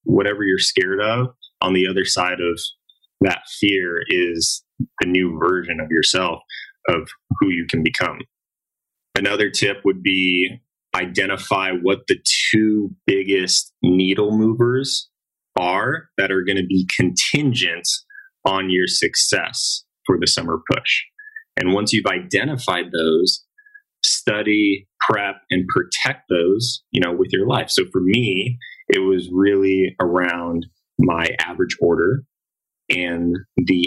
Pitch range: 90-125 Hz